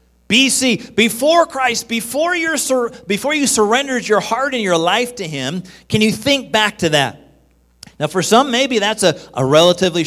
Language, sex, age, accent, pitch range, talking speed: English, male, 40-59, American, 160-240 Hz, 165 wpm